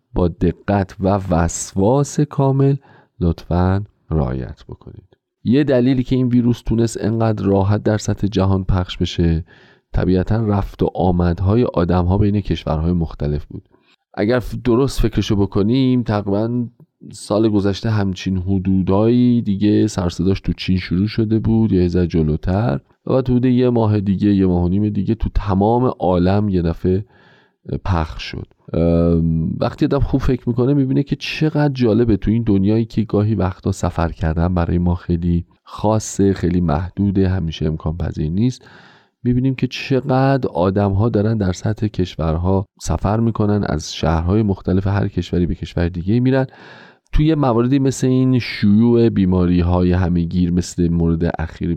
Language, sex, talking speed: Persian, male, 140 wpm